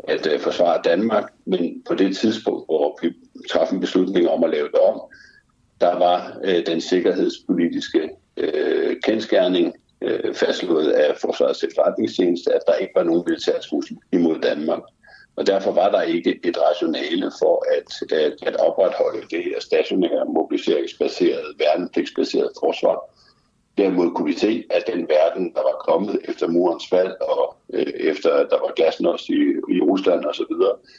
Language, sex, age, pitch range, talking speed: Danish, male, 60-79, 335-485 Hz, 145 wpm